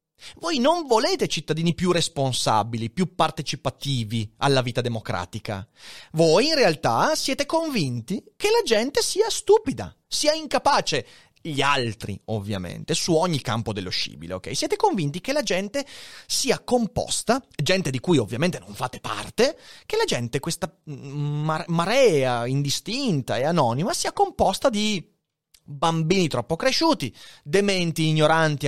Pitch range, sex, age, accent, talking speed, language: 135-200 Hz, male, 30-49, native, 130 wpm, Italian